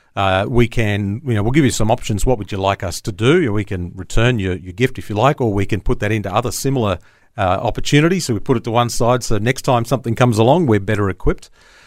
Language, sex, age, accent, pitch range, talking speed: English, male, 40-59, Australian, 100-125 Hz, 265 wpm